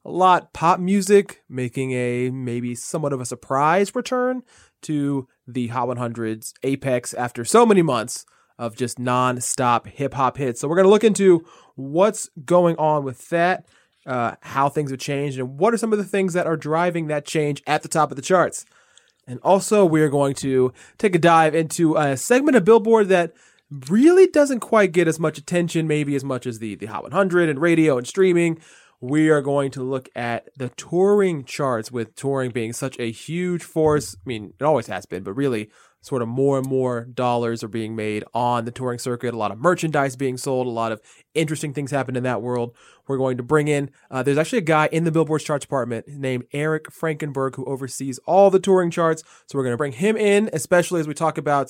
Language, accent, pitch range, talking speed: English, American, 125-170 Hz, 210 wpm